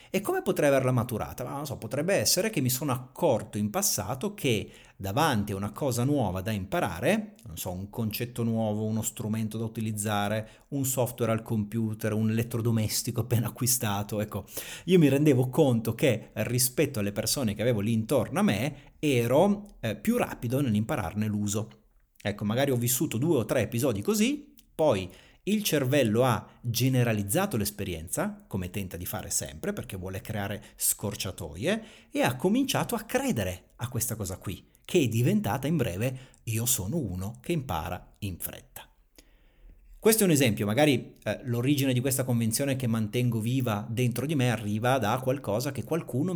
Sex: male